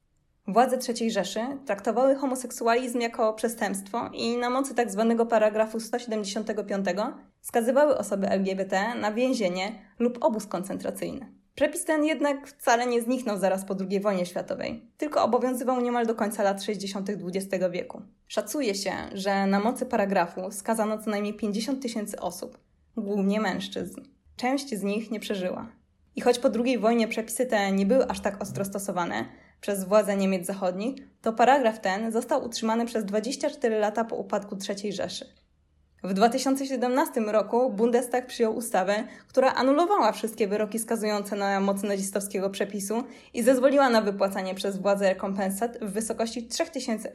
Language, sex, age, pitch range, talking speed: Polish, female, 20-39, 200-245 Hz, 145 wpm